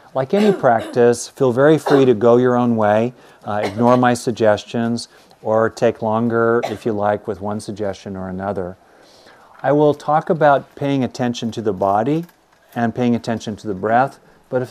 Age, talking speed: 40-59, 175 wpm